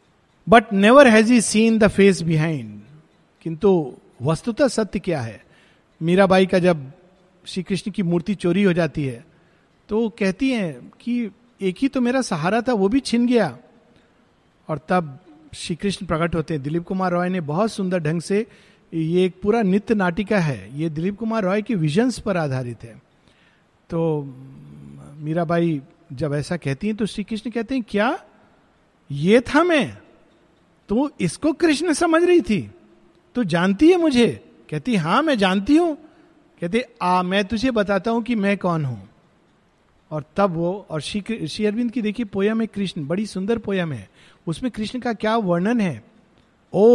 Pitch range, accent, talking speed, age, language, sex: 165-230 Hz, native, 165 wpm, 50-69, Hindi, male